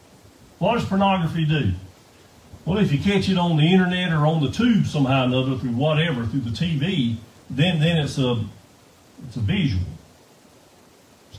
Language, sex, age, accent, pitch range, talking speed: English, male, 50-69, American, 110-155 Hz, 170 wpm